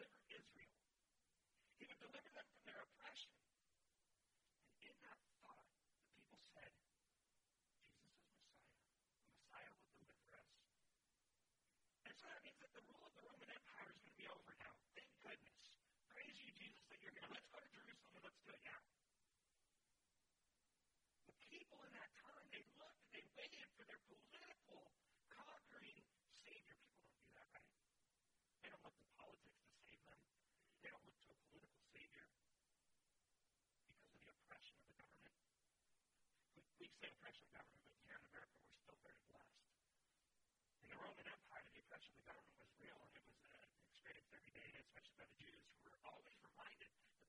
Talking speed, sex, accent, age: 170 wpm, male, American, 50-69